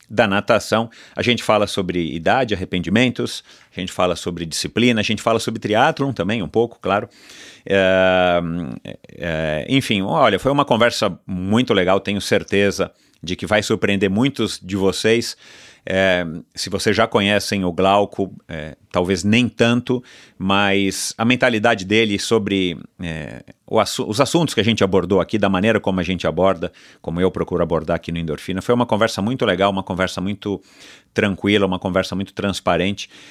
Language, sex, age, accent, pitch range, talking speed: Portuguese, male, 40-59, Brazilian, 90-110 Hz, 160 wpm